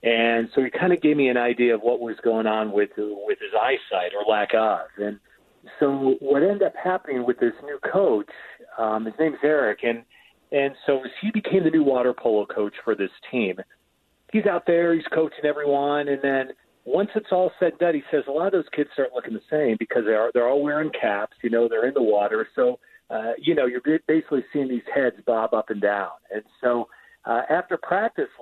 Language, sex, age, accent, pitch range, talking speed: English, male, 40-59, American, 120-160 Hz, 220 wpm